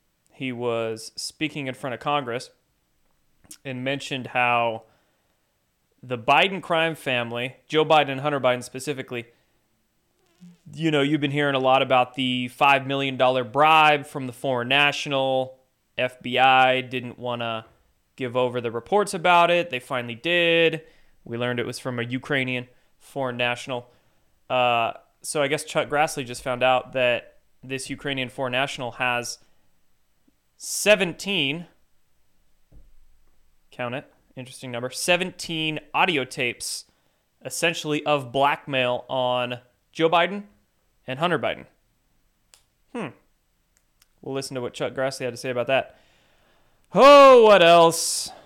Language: English